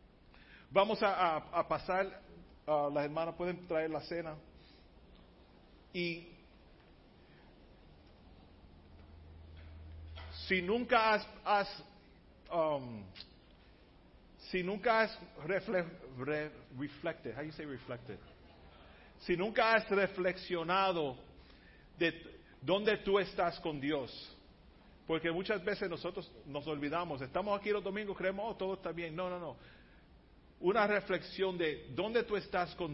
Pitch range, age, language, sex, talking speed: 115-190 Hz, 40-59, Spanish, male, 115 wpm